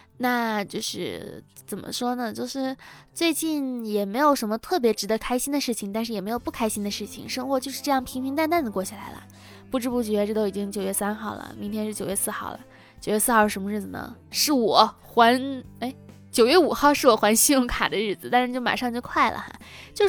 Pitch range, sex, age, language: 215-270 Hz, female, 10-29, Chinese